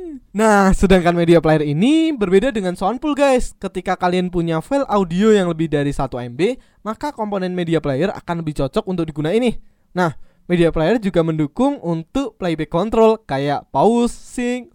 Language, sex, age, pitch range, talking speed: Indonesian, male, 20-39, 165-230 Hz, 165 wpm